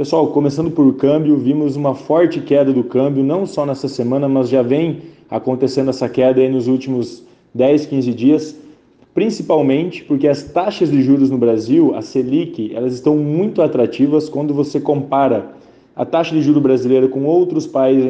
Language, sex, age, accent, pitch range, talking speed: Portuguese, male, 20-39, Brazilian, 130-160 Hz, 170 wpm